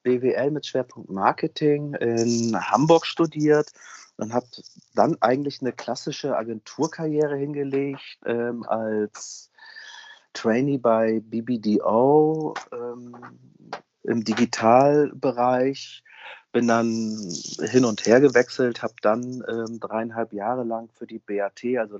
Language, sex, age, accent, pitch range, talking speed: German, male, 40-59, German, 110-135 Hz, 105 wpm